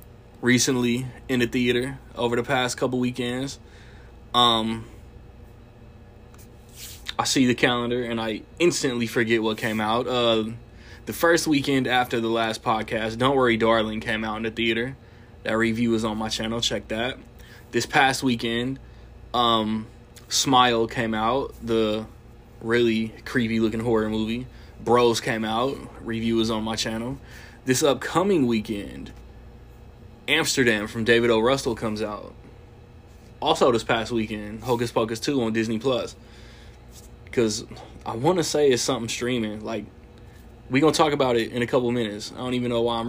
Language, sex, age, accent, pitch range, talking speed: English, male, 20-39, American, 110-125 Hz, 155 wpm